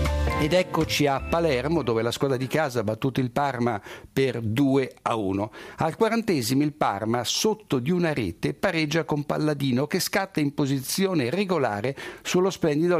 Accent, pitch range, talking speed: native, 125-170 Hz, 160 wpm